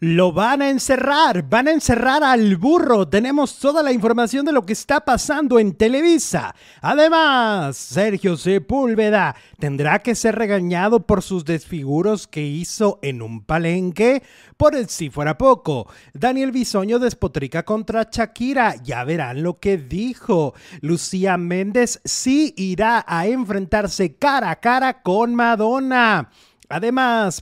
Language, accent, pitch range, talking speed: Spanish, Mexican, 170-235 Hz, 135 wpm